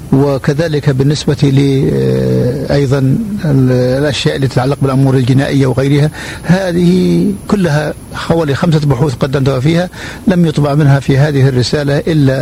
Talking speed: 115 wpm